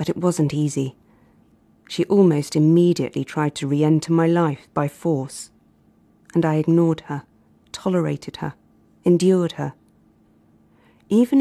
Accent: British